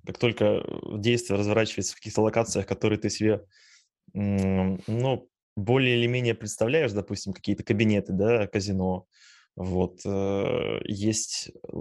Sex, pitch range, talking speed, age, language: male, 95-120 Hz, 110 wpm, 20-39, Russian